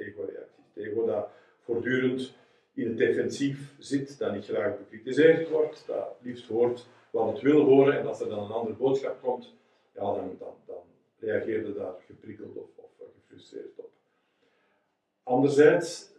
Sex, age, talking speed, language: male, 50-69, 165 wpm, Dutch